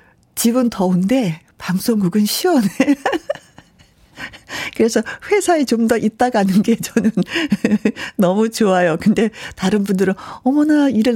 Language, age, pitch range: Korean, 50-69, 180-270 Hz